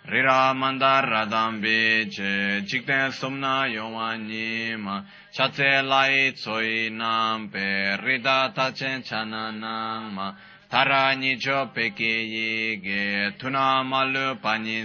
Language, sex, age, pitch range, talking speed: Italian, male, 20-39, 110-135 Hz, 45 wpm